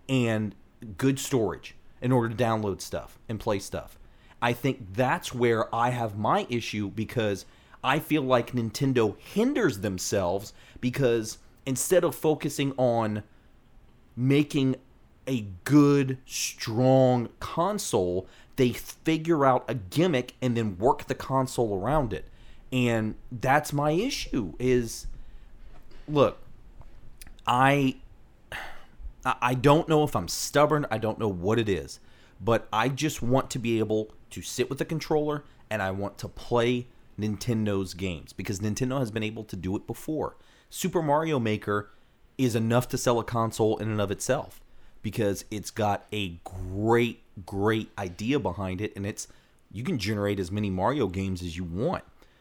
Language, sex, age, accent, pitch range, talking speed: English, male, 30-49, American, 105-130 Hz, 150 wpm